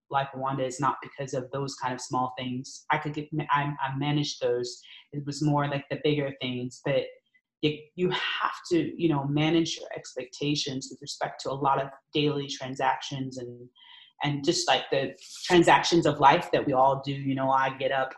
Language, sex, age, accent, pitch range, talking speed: English, female, 30-49, American, 135-160 Hz, 200 wpm